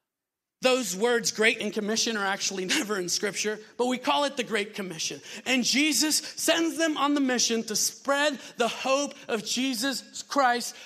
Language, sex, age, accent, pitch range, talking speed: English, male, 40-59, American, 210-275 Hz, 170 wpm